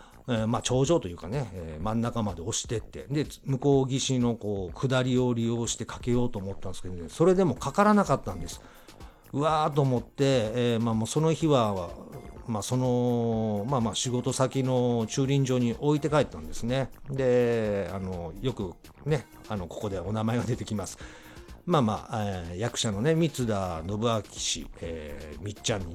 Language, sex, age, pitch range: Japanese, male, 50-69, 100-135 Hz